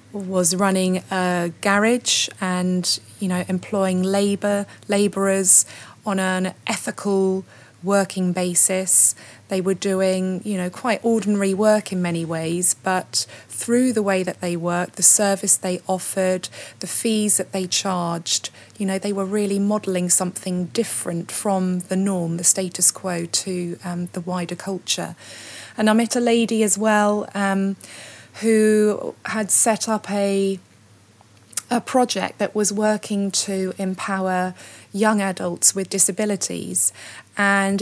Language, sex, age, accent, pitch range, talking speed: English, female, 20-39, British, 180-205 Hz, 135 wpm